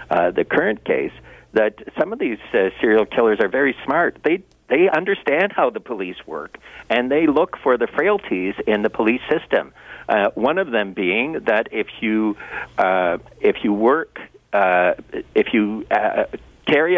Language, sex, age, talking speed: English, male, 60-79, 170 wpm